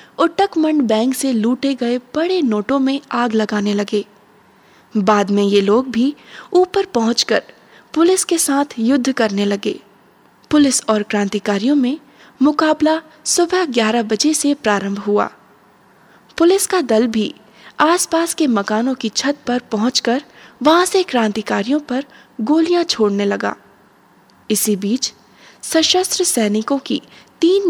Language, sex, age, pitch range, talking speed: Hindi, female, 20-39, 215-300 Hz, 130 wpm